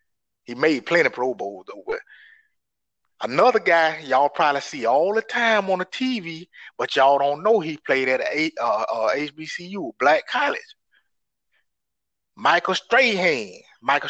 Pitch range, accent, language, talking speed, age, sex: 170-230 Hz, American, English, 145 wpm, 30-49, male